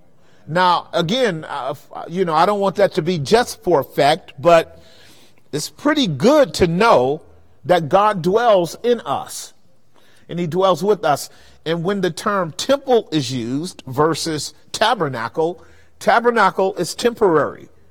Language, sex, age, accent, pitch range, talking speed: English, male, 40-59, American, 165-210 Hz, 140 wpm